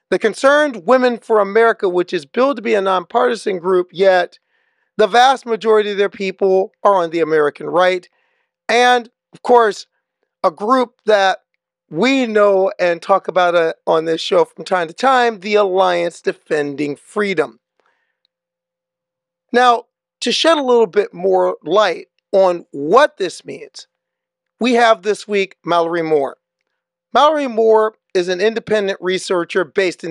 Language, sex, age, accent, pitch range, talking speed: English, male, 40-59, American, 180-235 Hz, 145 wpm